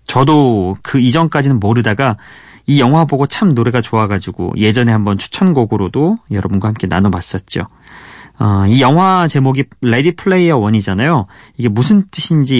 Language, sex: Korean, male